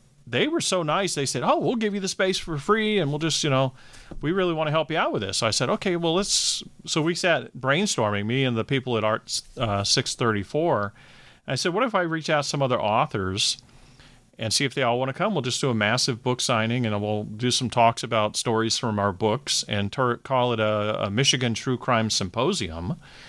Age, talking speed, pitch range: 40-59, 240 wpm, 110-150 Hz